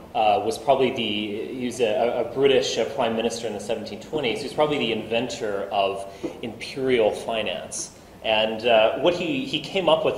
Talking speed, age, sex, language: 185 wpm, 30-49, male, English